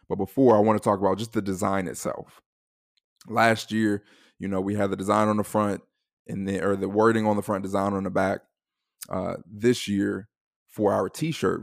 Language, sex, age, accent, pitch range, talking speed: English, male, 20-39, American, 95-110 Hz, 205 wpm